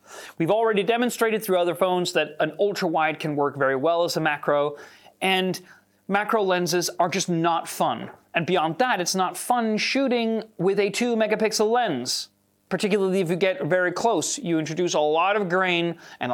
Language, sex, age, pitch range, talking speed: English, male, 30-49, 160-205 Hz, 180 wpm